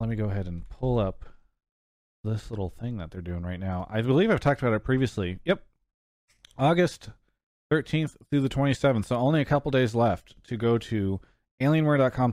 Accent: American